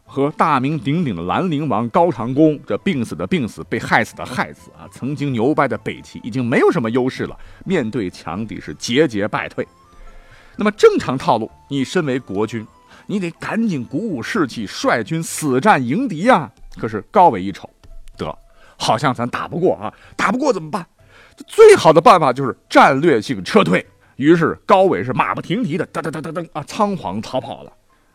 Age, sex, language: 50-69, male, Chinese